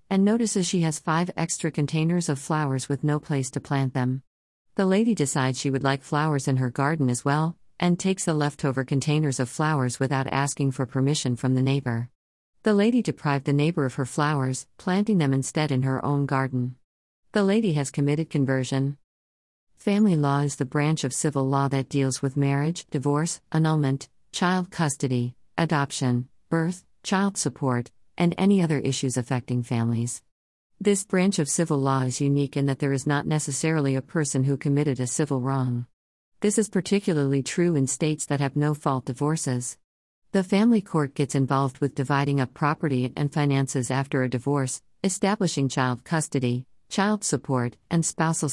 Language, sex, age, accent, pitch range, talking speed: English, female, 50-69, American, 130-160 Hz, 170 wpm